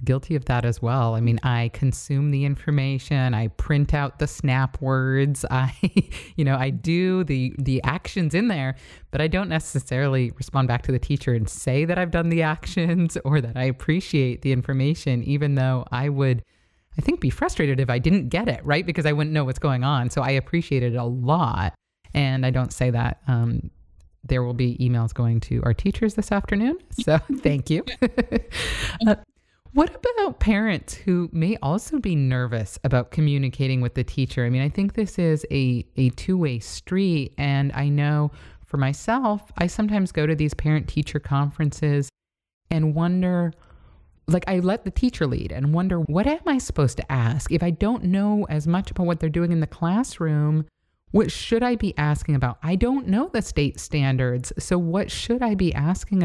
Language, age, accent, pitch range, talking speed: English, 30-49, American, 130-180 Hz, 190 wpm